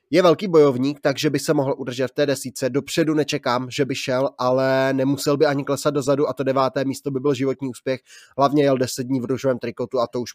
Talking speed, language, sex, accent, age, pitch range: 230 wpm, Czech, male, native, 20-39, 125-140 Hz